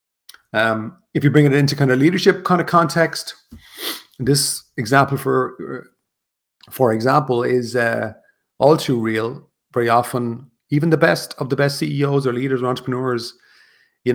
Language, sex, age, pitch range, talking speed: English, male, 40-59, 110-135 Hz, 155 wpm